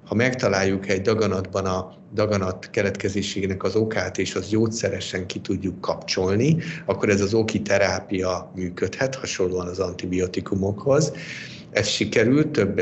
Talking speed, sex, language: 125 wpm, male, Hungarian